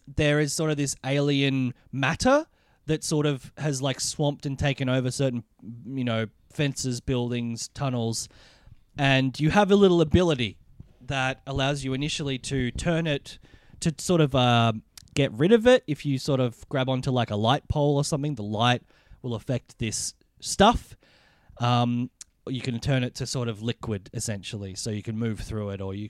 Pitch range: 115-145 Hz